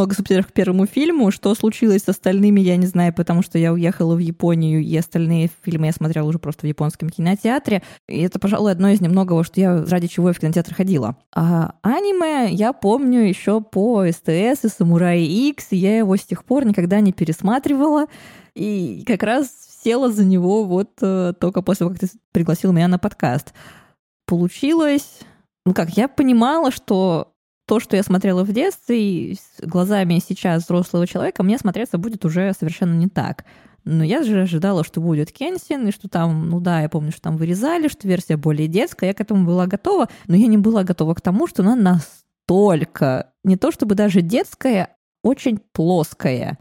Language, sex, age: Russian, female, 20-39